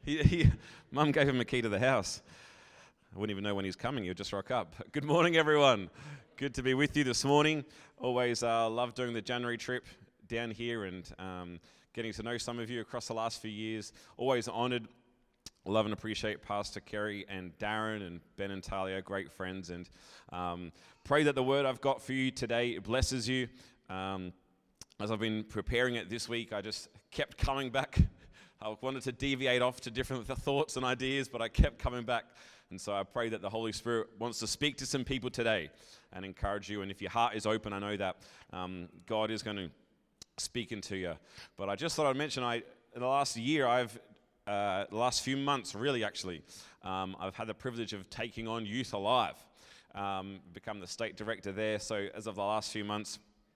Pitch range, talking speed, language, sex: 100-125 Hz, 210 wpm, English, male